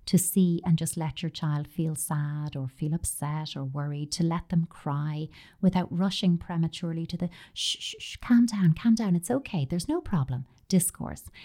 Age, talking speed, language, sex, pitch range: 30-49, 190 wpm, English, female, 150-190 Hz